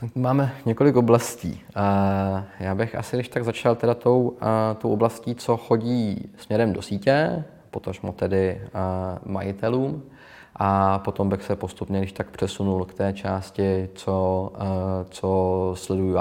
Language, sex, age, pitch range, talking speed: Czech, male, 20-39, 95-110 Hz, 130 wpm